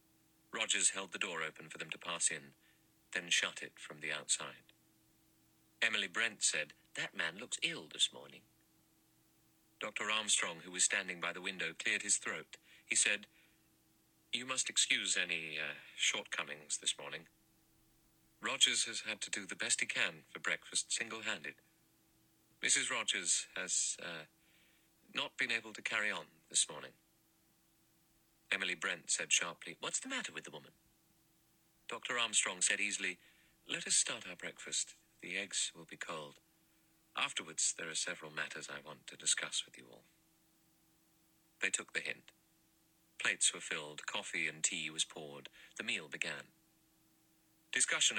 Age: 40-59